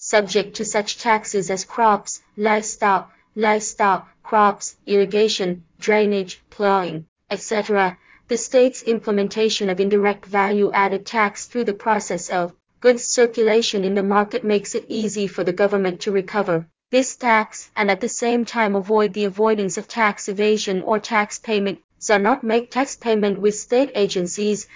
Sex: female